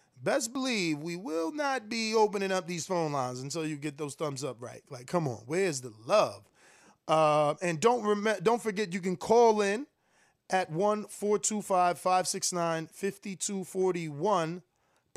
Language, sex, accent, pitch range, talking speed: English, male, American, 155-185 Hz, 140 wpm